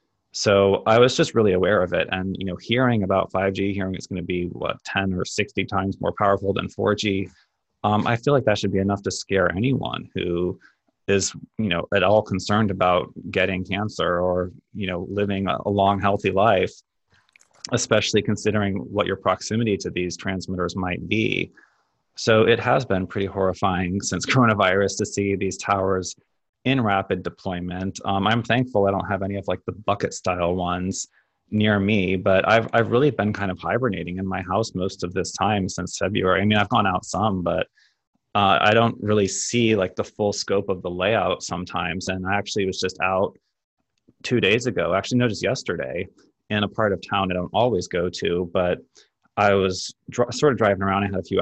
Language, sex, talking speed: English, male, 200 wpm